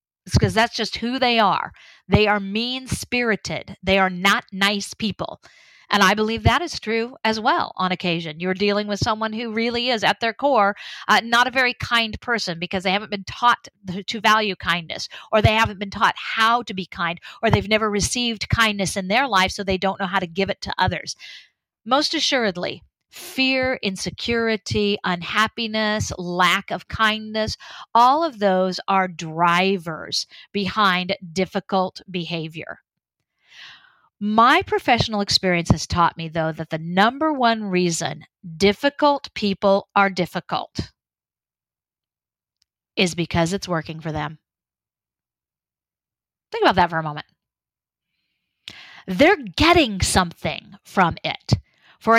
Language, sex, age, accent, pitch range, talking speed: English, female, 50-69, American, 185-230 Hz, 145 wpm